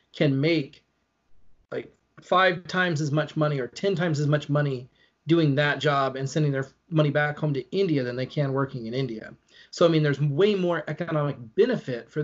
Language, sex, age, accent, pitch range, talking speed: English, male, 30-49, American, 135-155 Hz, 195 wpm